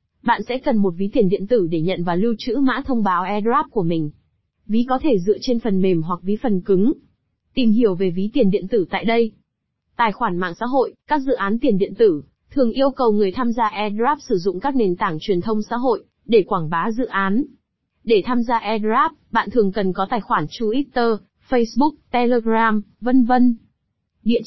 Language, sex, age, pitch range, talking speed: Vietnamese, female, 20-39, 195-250 Hz, 215 wpm